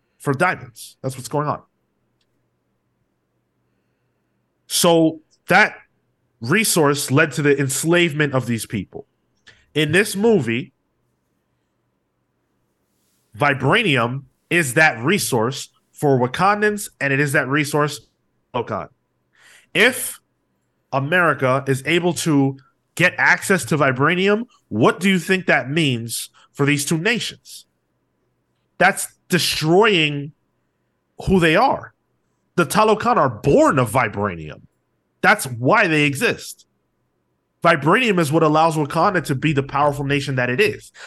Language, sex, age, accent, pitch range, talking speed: English, male, 30-49, American, 135-180 Hz, 115 wpm